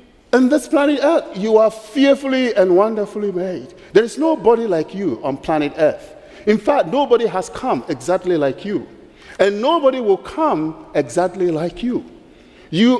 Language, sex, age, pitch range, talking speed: English, male, 50-69, 200-280 Hz, 155 wpm